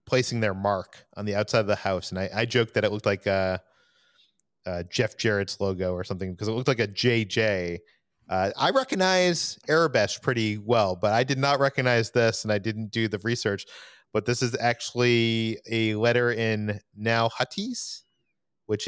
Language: English